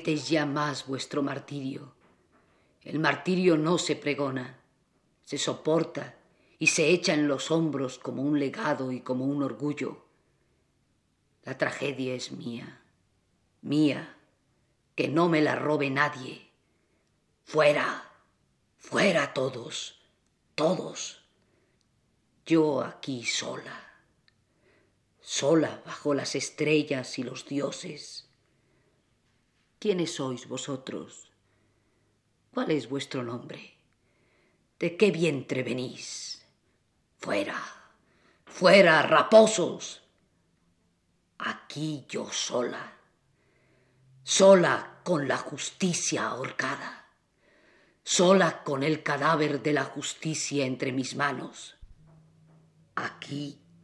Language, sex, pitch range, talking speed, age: Spanish, female, 130-155 Hz, 90 wpm, 40-59